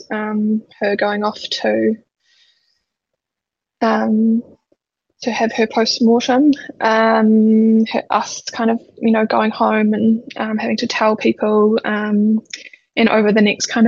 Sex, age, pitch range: female, 10-29, 210-240 Hz